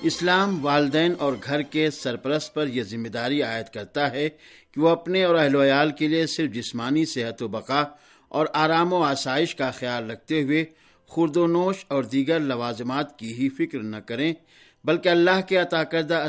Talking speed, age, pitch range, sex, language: 185 wpm, 50-69, 135-165 Hz, male, Urdu